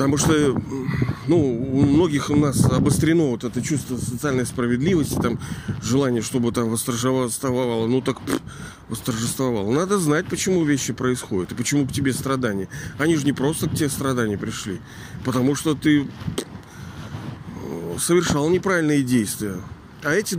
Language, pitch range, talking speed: Russian, 125-165 Hz, 140 wpm